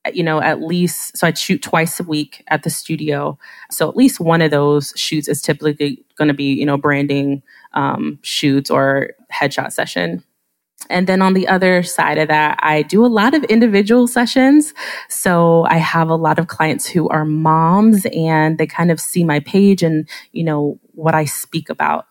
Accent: American